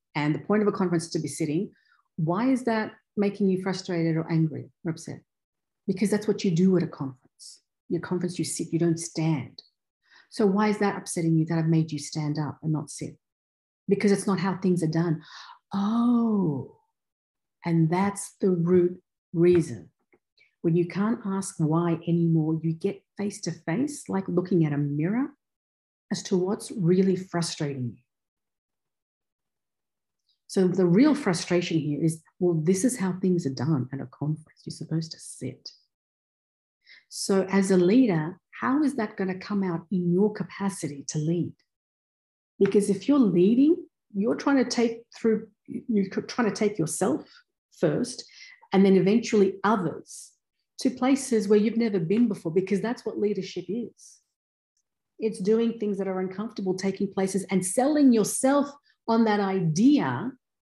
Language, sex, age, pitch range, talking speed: English, female, 50-69, 165-215 Hz, 165 wpm